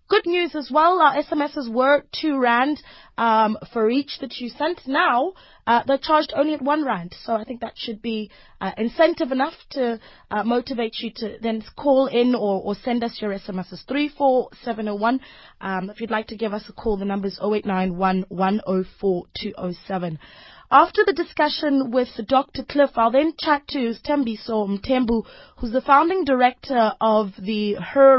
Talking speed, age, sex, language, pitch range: 190 wpm, 20-39, female, English, 215-295 Hz